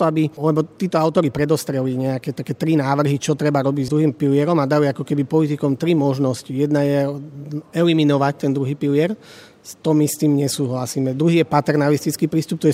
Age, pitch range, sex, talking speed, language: 30-49, 140-160 Hz, male, 185 wpm, Slovak